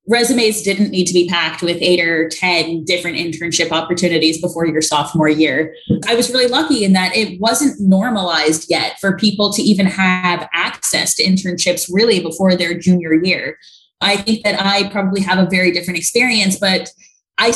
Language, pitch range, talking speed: English, 175-215 Hz, 180 wpm